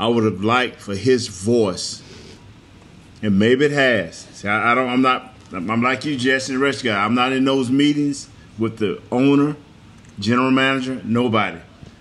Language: English